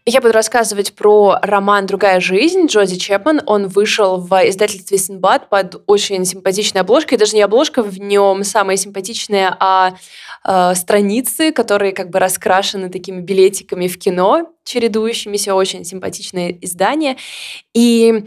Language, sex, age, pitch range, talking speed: Russian, female, 20-39, 185-220 Hz, 135 wpm